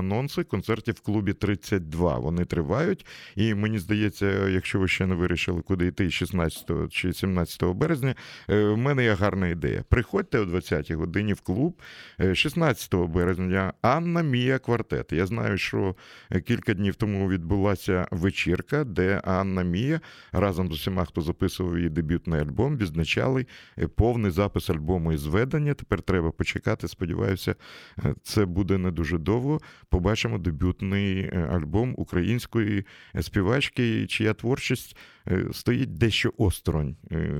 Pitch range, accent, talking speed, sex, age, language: 85-110 Hz, native, 130 wpm, male, 50-69, Russian